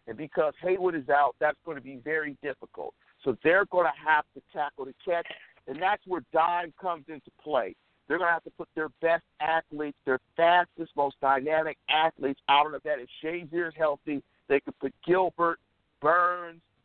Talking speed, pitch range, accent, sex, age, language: 190 wpm, 135-170 Hz, American, male, 50-69, English